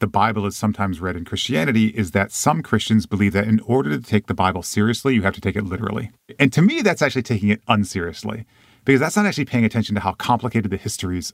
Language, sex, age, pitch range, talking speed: English, male, 40-59, 100-120 Hz, 240 wpm